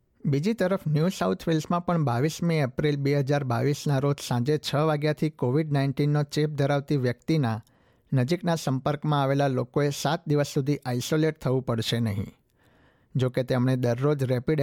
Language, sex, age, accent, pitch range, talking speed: Gujarati, male, 60-79, native, 125-150 Hz, 130 wpm